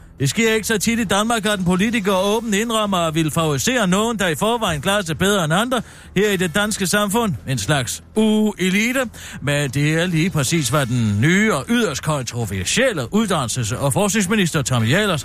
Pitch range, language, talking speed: 160-230 Hz, Danish, 190 wpm